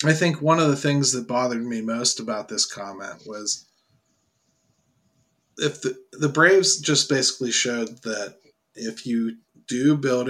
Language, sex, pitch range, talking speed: English, male, 120-145 Hz, 150 wpm